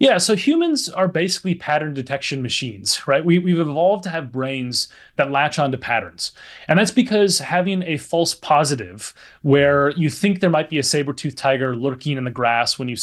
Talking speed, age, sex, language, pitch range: 195 wpm, 30-49, male, English, 130-180 Hz